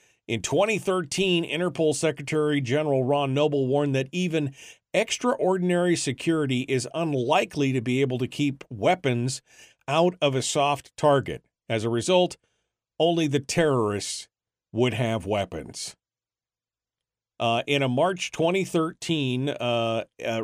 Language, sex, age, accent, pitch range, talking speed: English, male, 50-69, American, 120-160 Hz, 115 wpm